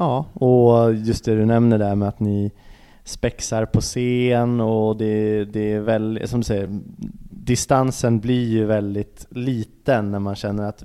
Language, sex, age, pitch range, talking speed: English, male, 20-39, 105-130 Hz, 170 wpm